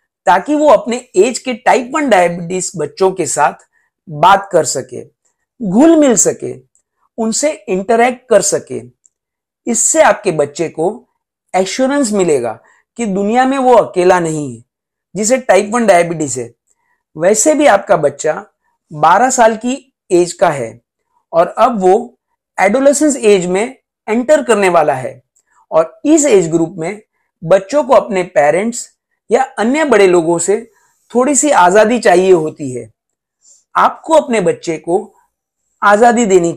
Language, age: Hindi, 50-69